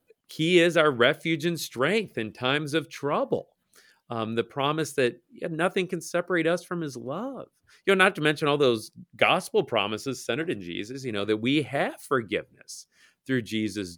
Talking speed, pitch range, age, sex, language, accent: 180 wpm, 115-170 Hz, 40-59, male, English, American